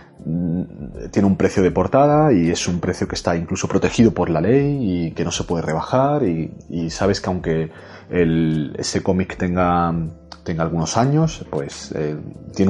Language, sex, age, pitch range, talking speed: Spanish, male, 30-49, 85-110 Hz, 175 wpm